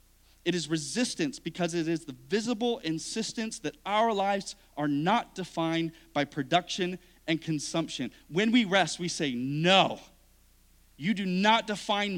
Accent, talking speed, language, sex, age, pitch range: American, 145 wpm, English, male, 40-59, 145-205 Hz